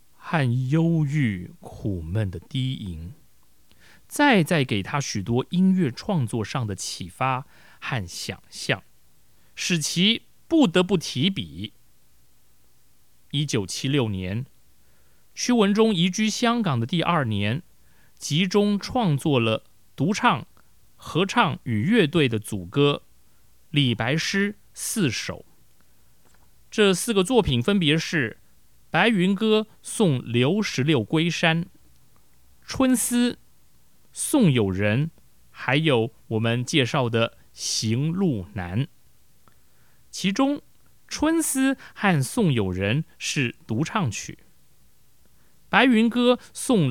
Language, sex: Chinese, male